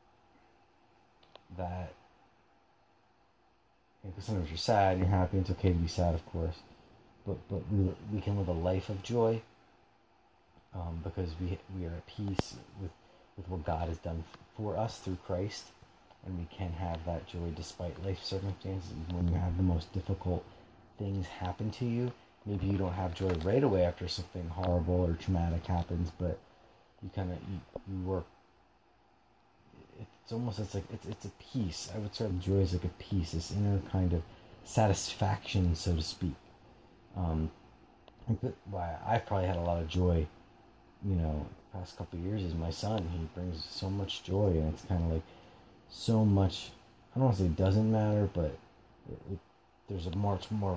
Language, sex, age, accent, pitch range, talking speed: English, male, 30-49, American, 85-100 Hz, 185 wpm